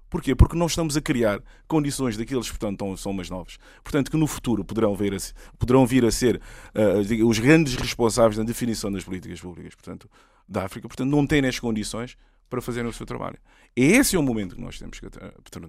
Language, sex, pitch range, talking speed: Portuguese, male, 115-160 Hz, 185 wpm